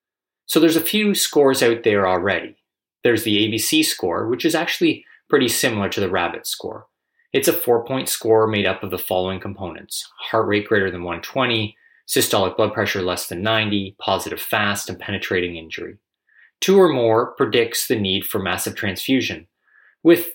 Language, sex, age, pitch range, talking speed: English, male, 20-39, 95-135 Hz, 170 wpm